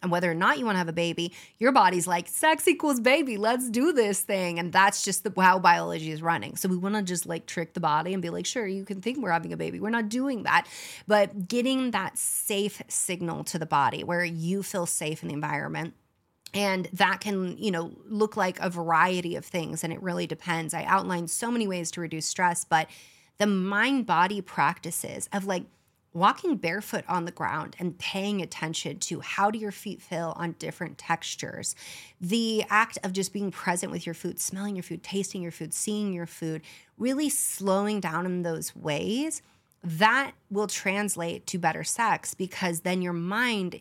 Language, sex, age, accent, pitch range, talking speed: English, female, 30-49, American, 170-210 Hz, 200 wpm